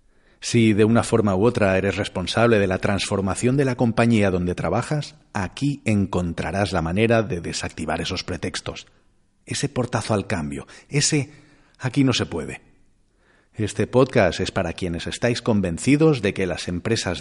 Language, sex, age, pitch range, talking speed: Spanish, male, 40-59, 95-120 Hz, 155 wpm